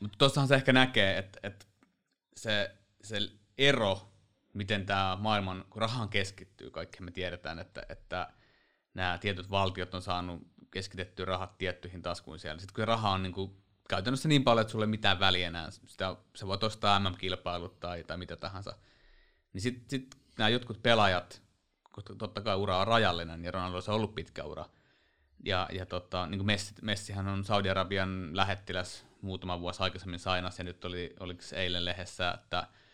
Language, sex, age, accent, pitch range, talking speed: Finnish, male, 30-49, native, 90-105 Hz, 165 wpm